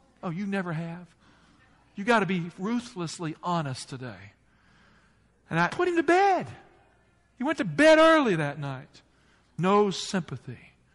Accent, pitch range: American, 145-195 Hz